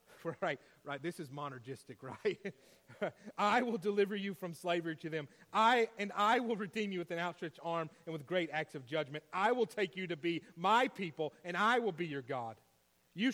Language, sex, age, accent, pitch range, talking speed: English, male, 40-59, American, 165-230 Hz, 205 wpm